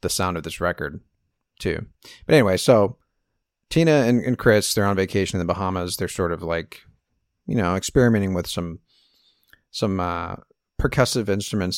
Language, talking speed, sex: English, 165 wpm, male